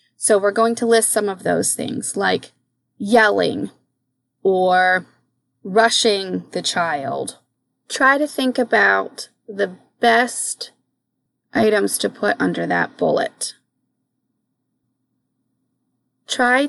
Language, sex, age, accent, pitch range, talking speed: English, female, 20-39, American, 135-220 Hz, 100 wpm